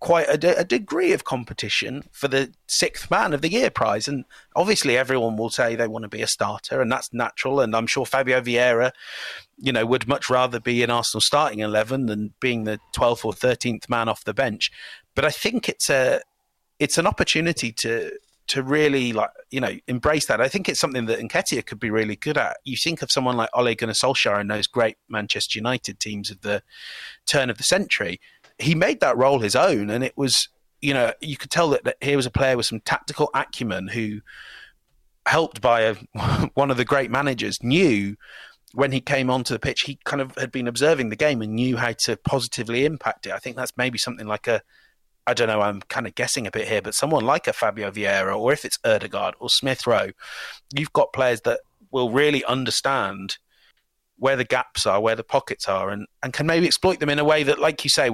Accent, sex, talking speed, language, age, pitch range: British, male, 220 wpm, English, 30-49, 115-140 Hz